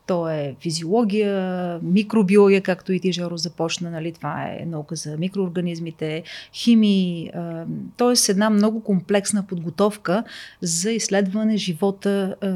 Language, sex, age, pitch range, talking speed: Bulgarian, female, 30-49, 170-205 Hz, 110 wpm